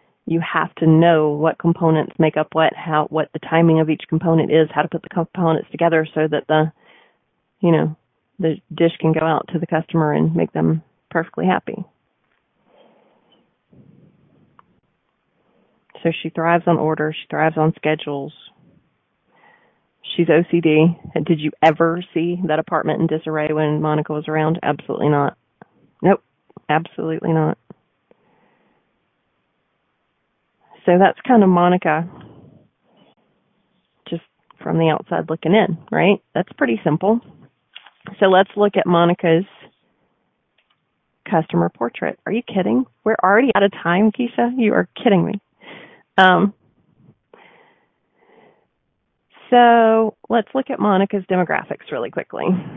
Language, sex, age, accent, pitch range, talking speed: English, female, 30-49, American, 155-185 Hz, 130 wpm